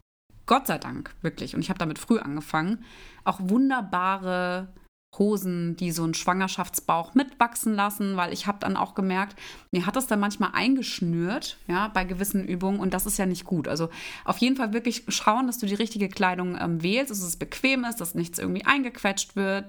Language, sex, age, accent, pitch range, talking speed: German, female, 20-39, German, 180-205 Hz, 190 wpm